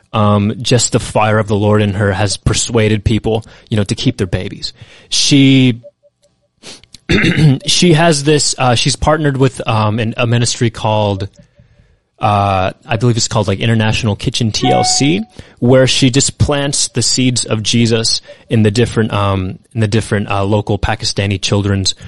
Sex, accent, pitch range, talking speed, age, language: male, American, 105-130 Hz, 160 wpm, 20-39, English